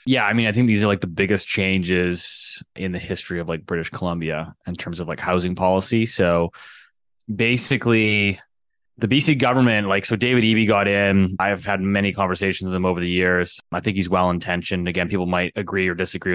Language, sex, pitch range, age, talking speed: English, male, 90-105 Hz, 20-39, 200 wpm